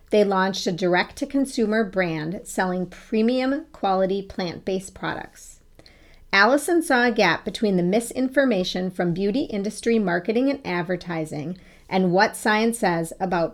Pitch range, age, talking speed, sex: 175-225 Hz, 40-59, 125 wpm, female